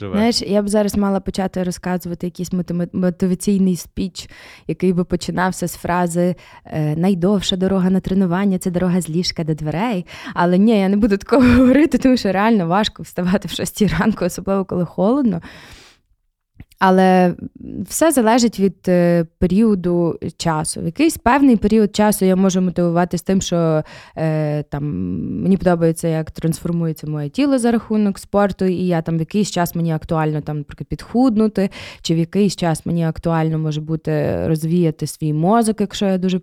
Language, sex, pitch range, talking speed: Ukrainian, female, 165-205 Hz, 160 wpm